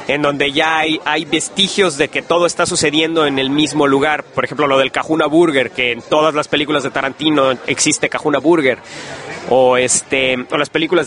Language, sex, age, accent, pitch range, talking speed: English, male, 30-49, Mexican, 145-185 Hz, 195 wpm